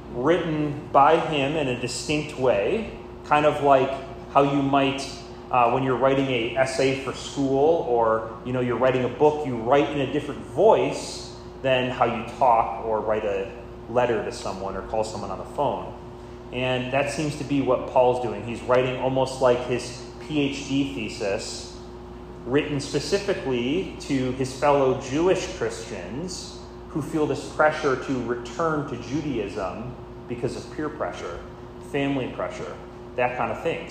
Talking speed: 160 wpm